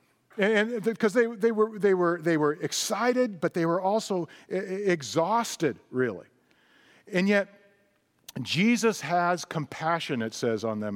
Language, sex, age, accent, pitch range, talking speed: English, male, 40-59, American, 165-220 Hz, 140 wpm